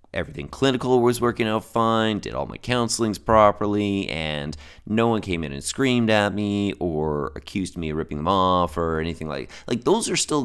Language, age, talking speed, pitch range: English, 30-49, 195 wpm, 75-100 Hz